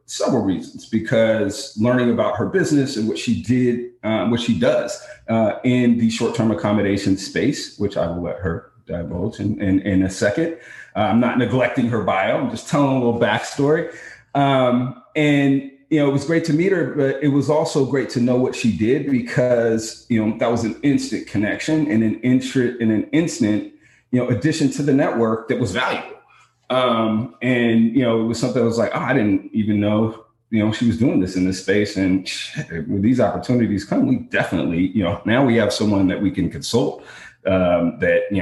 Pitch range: 105-135 Hz